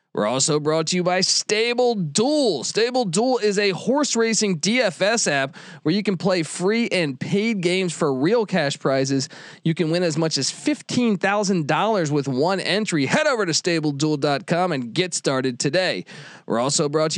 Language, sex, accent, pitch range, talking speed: English, male, American, 145-195 Hz, 175 wpm